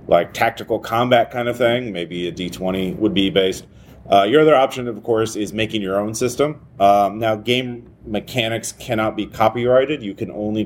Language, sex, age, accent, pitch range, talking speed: English, male, 30-49, American, 95-125 Hz, 185 wpm